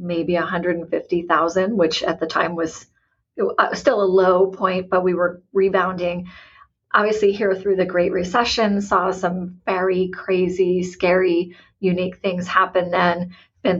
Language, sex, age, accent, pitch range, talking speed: English, female, 30-49, American, 180-220 Hz, 135 wpm